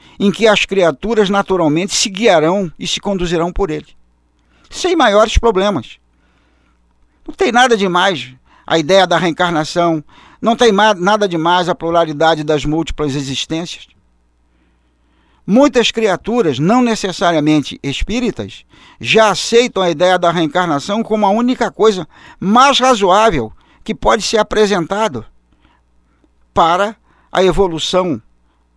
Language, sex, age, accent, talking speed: Portuguese, male, 60-79, Brazilian, 120 wpm